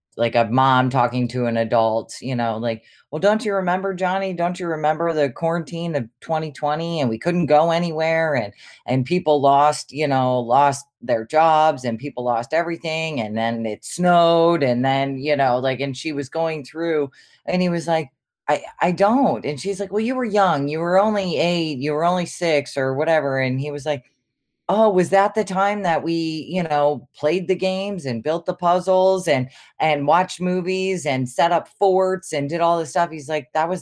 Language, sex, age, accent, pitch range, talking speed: English, female, 30-49, American, 135-180 Hz, 205 wpm